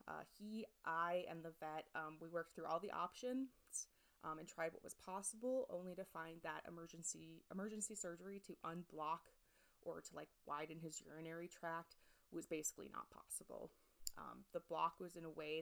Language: English